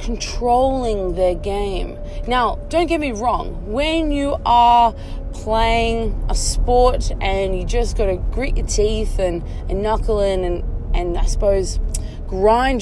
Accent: Australian